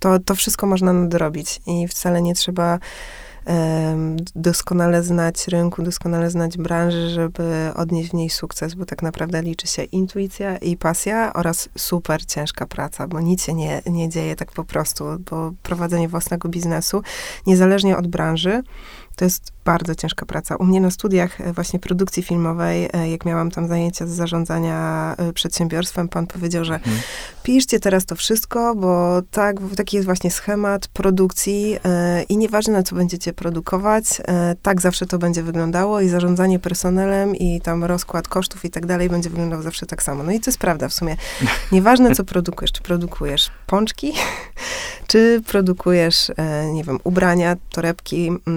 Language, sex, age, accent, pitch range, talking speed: Polish, female, 20-39, native, 165-185 Hz, 160 wpm